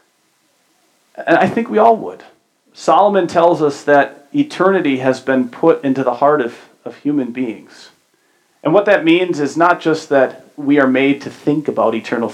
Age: 40-59